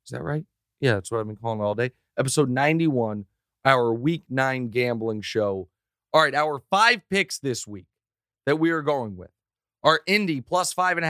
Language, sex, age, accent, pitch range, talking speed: English, male, 40-59, American, 120-155 Hz, 200 wpm